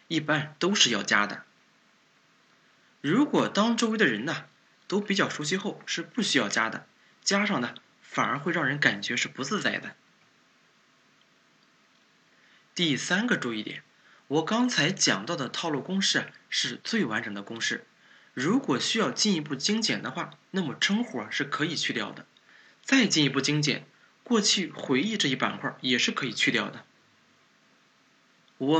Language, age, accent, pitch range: Chinese, 20-39, native, 145-230 Hz